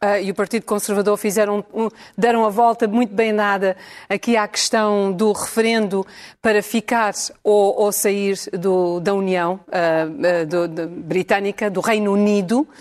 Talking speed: 150 wpm